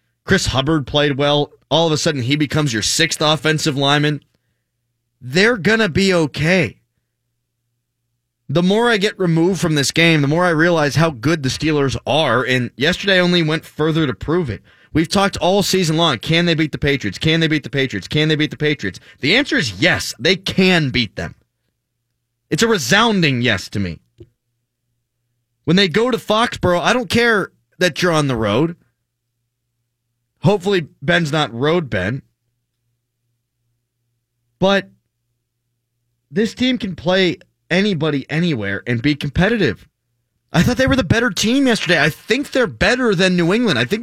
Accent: American